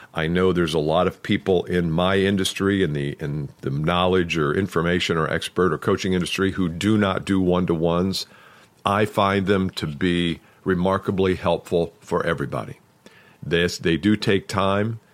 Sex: male